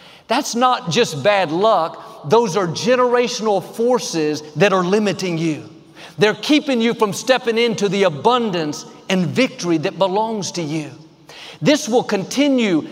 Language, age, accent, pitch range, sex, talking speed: English, 50-69, American, 190-260 Hz, male, 140 wpm